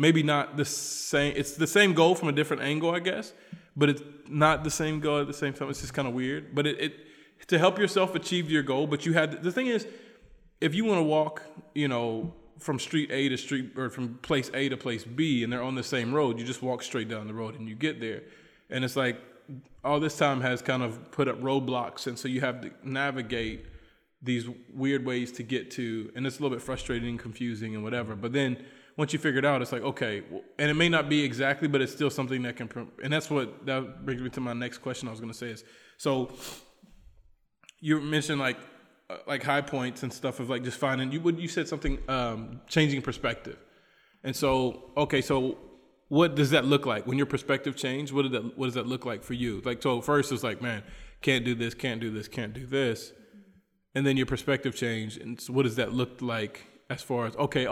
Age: 20-39